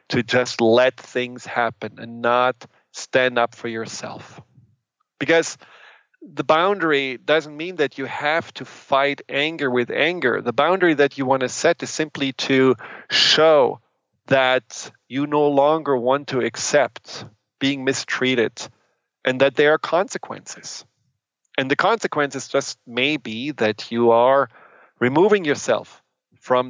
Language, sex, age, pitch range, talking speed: English, male, 40-59, 120-150 Hz, 135 wpm